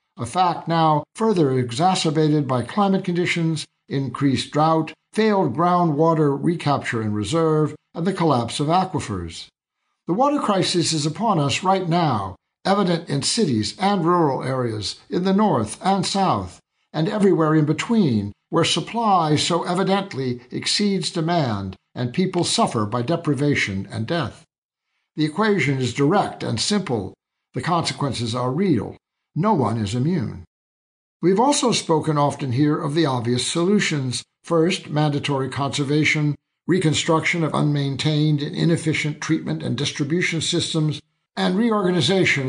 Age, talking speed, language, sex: 60-79, 130 wpm, English, male